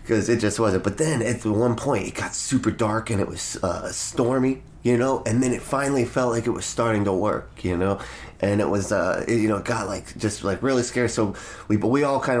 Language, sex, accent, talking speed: English, male, American, 255 wpm